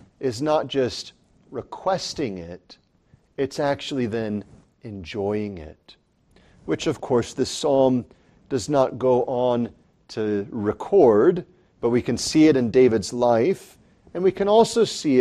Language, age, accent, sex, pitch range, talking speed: English, 40-59, American, male, 115-155 Hz, 135 wpm